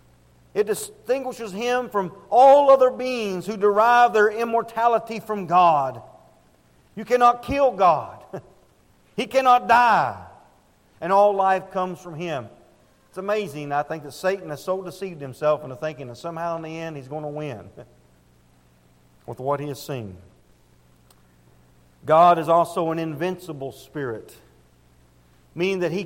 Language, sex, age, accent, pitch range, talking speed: English, male, 50-69, American, 135-200 Hz, 140 wpm